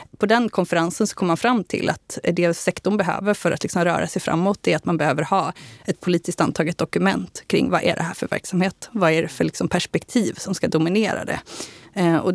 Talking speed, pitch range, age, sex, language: 210 wpm, 160-200 Hz, 20-39, female, Swedish